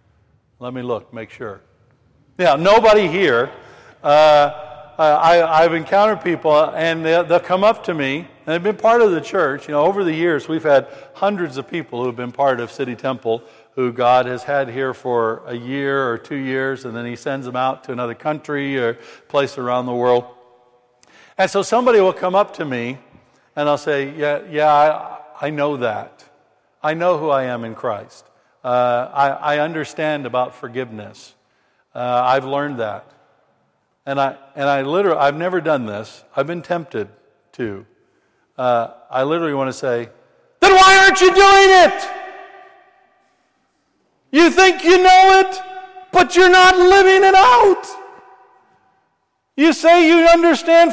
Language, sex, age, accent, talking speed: English, male, 60-79, American, 165 wpm